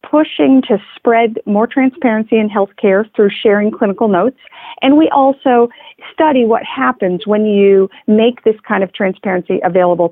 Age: 40-59